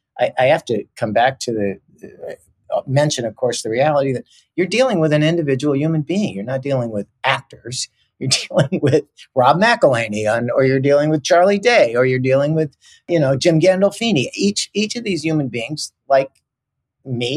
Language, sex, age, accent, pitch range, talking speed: English, male, 50-69, American, 115-150 Hz, 185 wpm